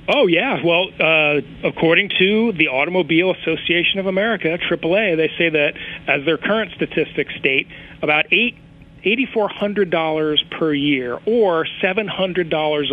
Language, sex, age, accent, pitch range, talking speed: English, male, 40-59, American, 155-190 Hz, 130 wpm